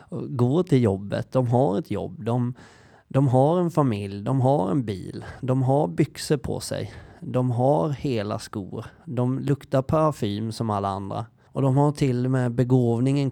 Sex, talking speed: male, 165 wpm